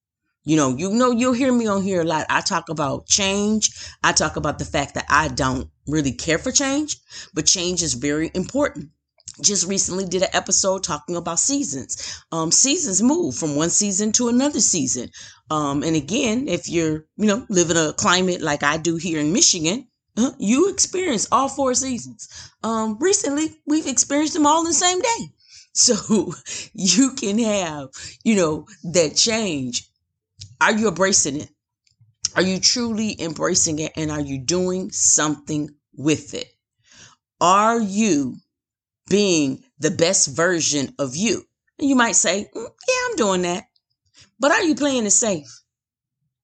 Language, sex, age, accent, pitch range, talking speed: English, female, 30-49, American, 150-235 Hz, 165 wpm